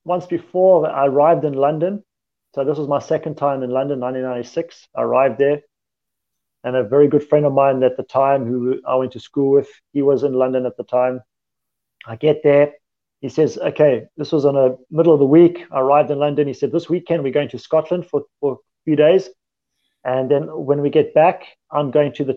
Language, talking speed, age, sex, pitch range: English, 220 wpm, 30-49, male, 130-165 Hz